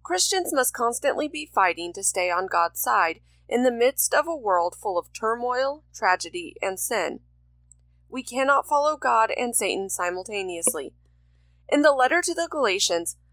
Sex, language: female, English